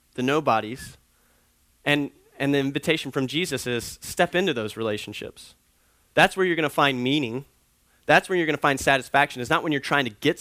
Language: English